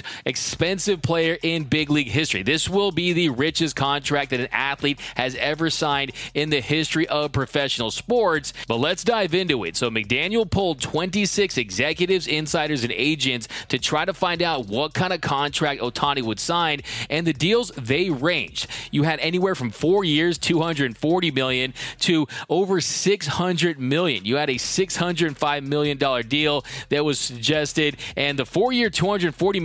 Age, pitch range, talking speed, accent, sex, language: 30-49, 140-175 Hz, 160 wpm, American, male, English